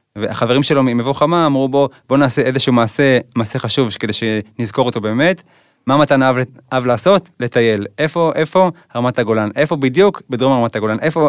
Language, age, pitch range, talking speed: Hebrew, 20-39, 115-140 Hz, 165 wpm